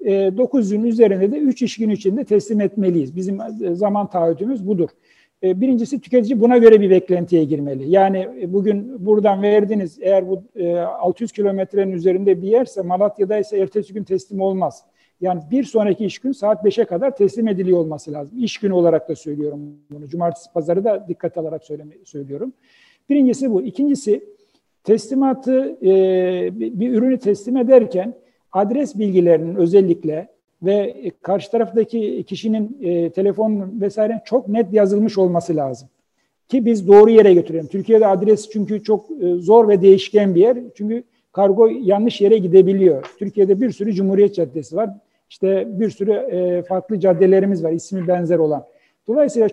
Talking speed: 145 wpm